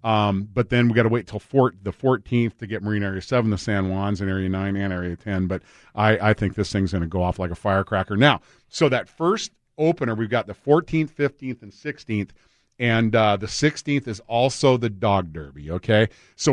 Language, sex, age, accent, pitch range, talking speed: English, male, 40-59, American, 105-130 Hz, 220 wpm